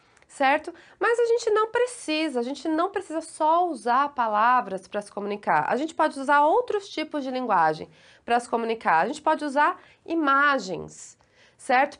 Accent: Brazilian